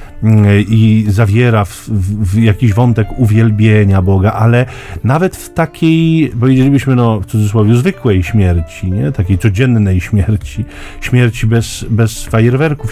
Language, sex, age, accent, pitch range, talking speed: Polish, male, 40-59, native, 110-135 Hz, 120 wpm